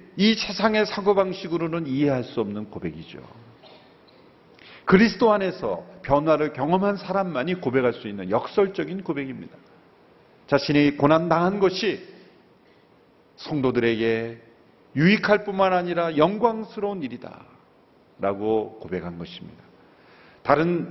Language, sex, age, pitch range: Korean, male, 40-59, 120-180 Hz